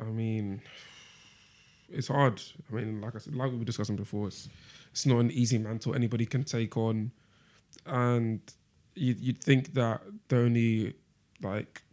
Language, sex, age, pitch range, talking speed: English, male, 20-39, 110-125 Hz, 160 wpm